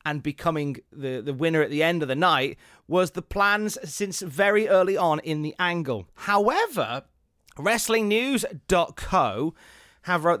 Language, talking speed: English, 145 wpm